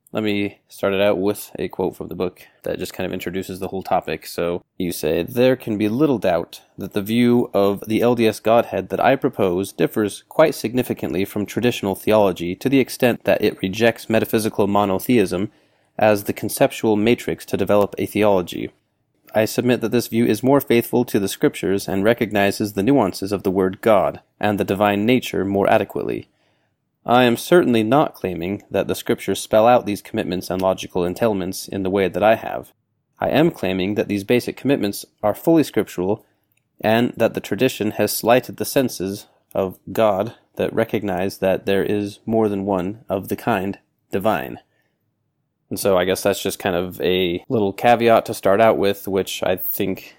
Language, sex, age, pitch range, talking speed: English, male, 30-49, 95-115 Hz, 185 wpm